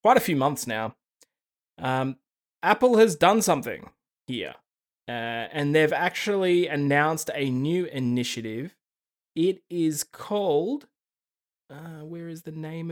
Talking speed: 125 wpm